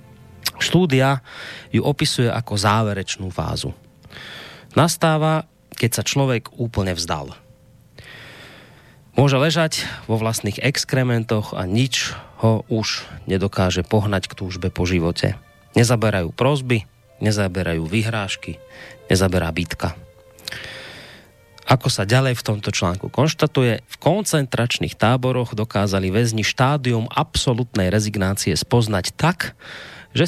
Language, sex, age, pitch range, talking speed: Slovak, male, 30-49, 100-130 Hz, 100 wpm